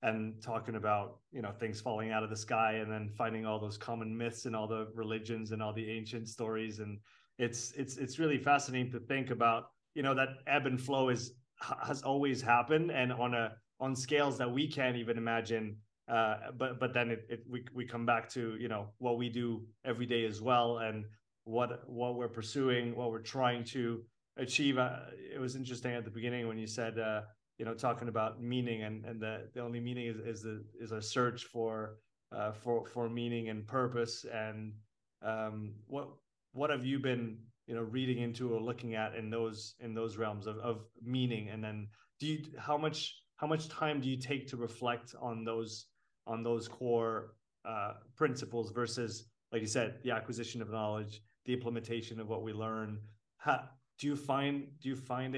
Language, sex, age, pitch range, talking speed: French, male, 30-49, 110-125 Hz, 200 wpm